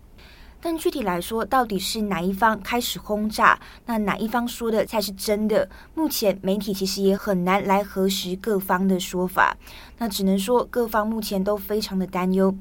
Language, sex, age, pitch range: Chinese, female, 20-39, 190-220 Hz